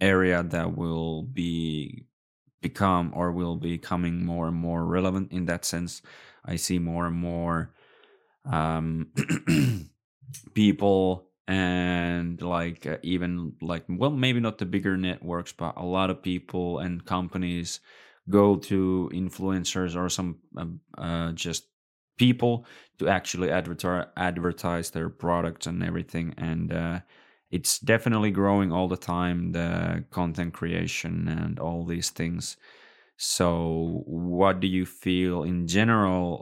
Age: 20-39